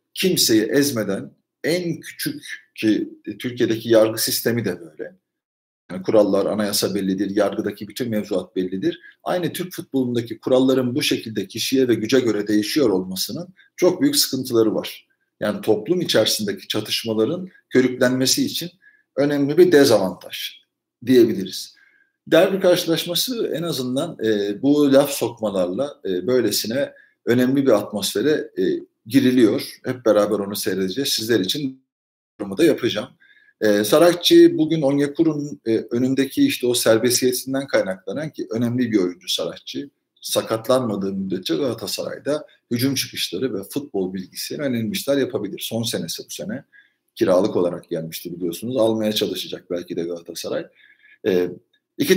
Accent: native